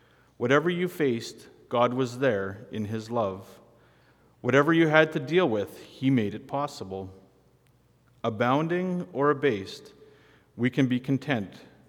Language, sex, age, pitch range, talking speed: English, male, 40-59, 115-135 Hz, 130 wpm